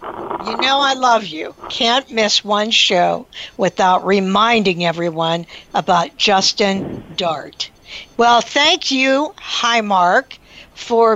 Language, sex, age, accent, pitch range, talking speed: English, female, 60-79, American, 190-245 Hz, 110 wpm